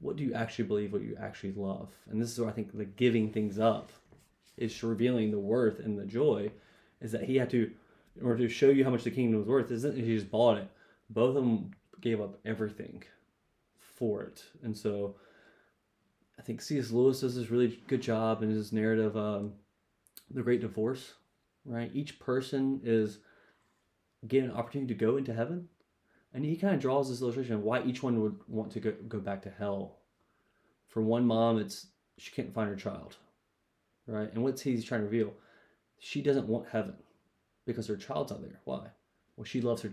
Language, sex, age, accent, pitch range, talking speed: English, male, 20-39, American, 105-125 Hz, 200 wpm